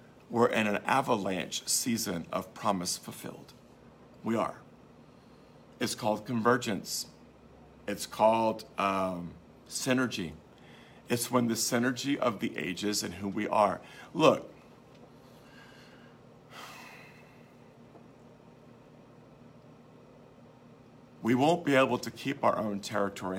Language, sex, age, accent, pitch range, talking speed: English, male, 50-69, American, 95-120 Hz, 95 wpm